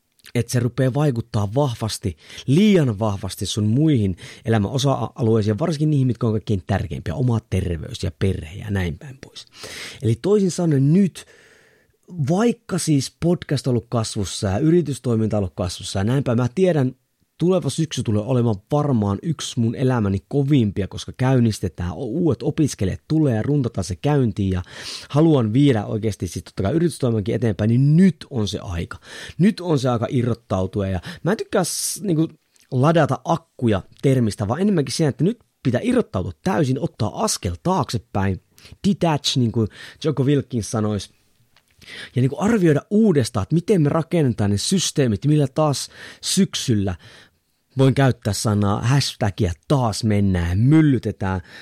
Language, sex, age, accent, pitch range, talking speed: Finnish, male, 30-49, native, 105-155 Hz, 145 wpm